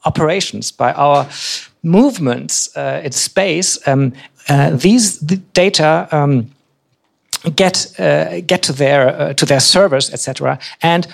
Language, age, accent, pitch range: Czech, 50-69, German, 135-170 Hz